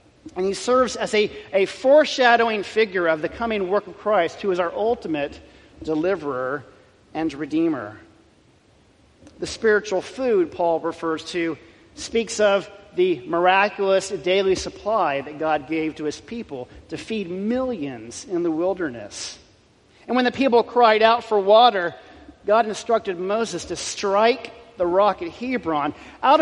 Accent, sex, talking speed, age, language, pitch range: American, male, 145 wpm, 40-59, English, 160-220 Hz